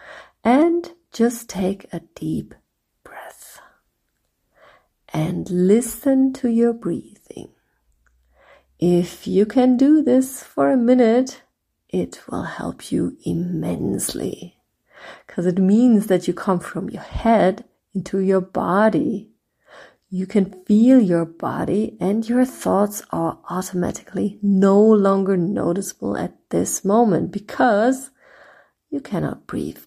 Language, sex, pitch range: English, female, 180-230 Hz